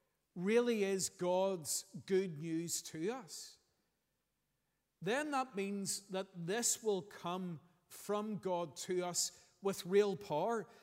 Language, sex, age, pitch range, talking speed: English, male, 50-69, 175-215 Hz, 115 wpm